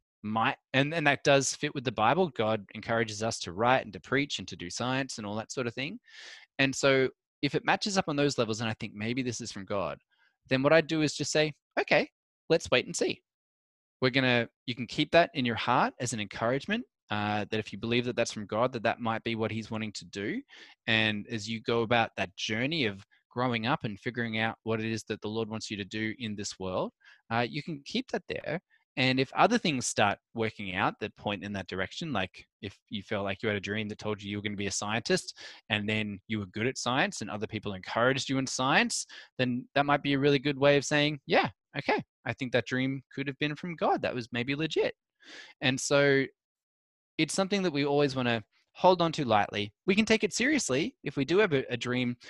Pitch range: 110-140 Hz